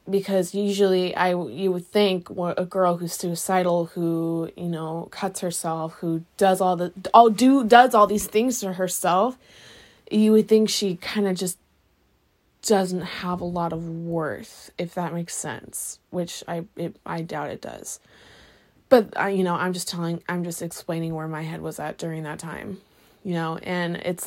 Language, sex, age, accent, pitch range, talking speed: English, female, 20-39, American, 170-200 Hz, 185 wpm